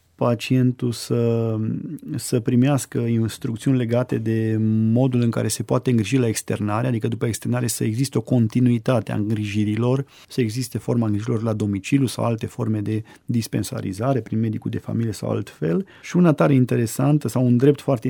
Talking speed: 165 wpm